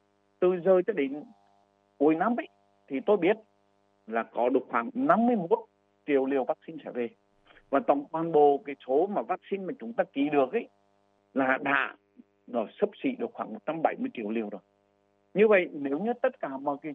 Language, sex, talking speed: Vietnamese, male, 190 wpm